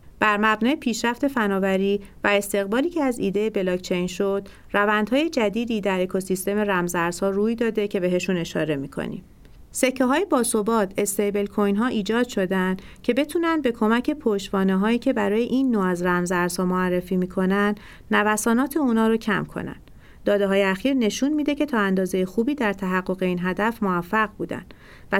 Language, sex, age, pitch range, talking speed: Persian, female, 40-59, 185-235 Hz, 145 wpm